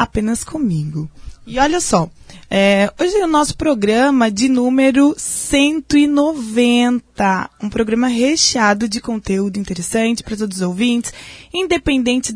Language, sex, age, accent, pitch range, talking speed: Portuguese, female, 20-39, Brazilian, 225-295 Hz, 120 wpm